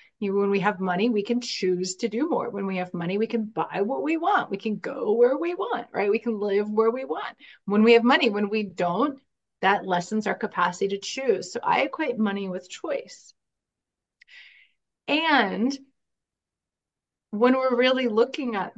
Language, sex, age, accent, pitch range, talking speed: English, female, 30-49, American, 200-250 Hz, 185 wpm